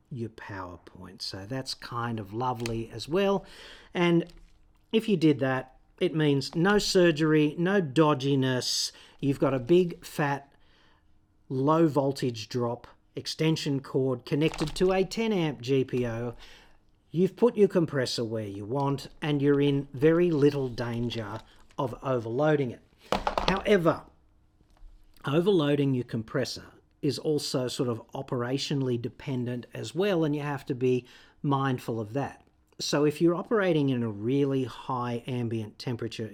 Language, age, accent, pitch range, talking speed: English, 40-59, Australian, 115-150 Hz, 135 wpm